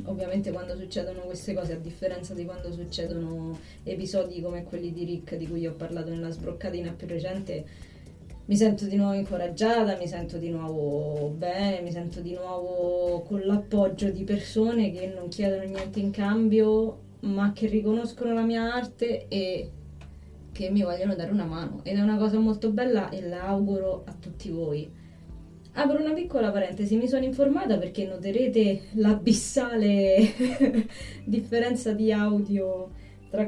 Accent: native